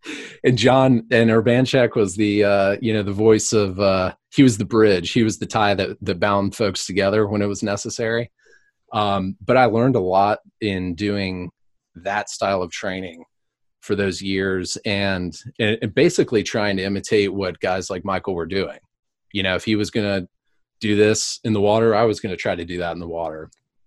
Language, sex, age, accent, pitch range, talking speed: English, male, 30-49, American, 95-110 Hz, 200 wpm